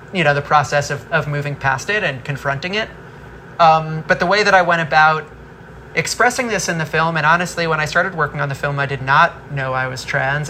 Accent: American